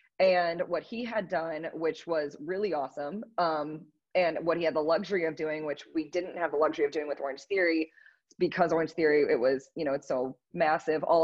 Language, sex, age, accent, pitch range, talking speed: English, female, 20-39, American, 150-175 Hz, 215 wpm